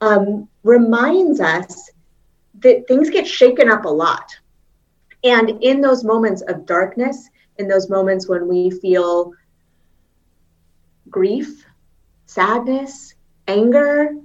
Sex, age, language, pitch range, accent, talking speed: female, 30-49, English, 180-255 Hz, American, 105 wpm